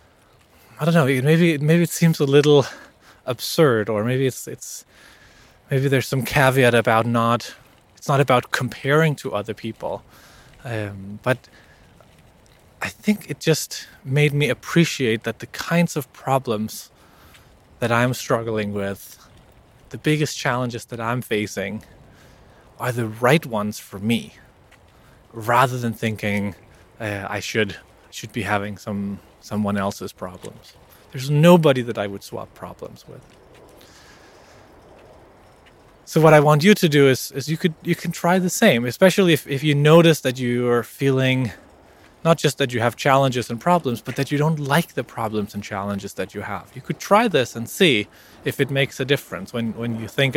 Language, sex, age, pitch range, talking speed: English, male, 20-39, 110-150 Hz, 165 wpm